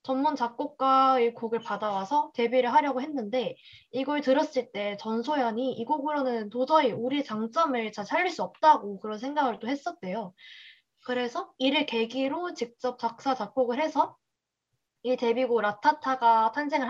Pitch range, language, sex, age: 225-285 Hz, Korean, female, 20-39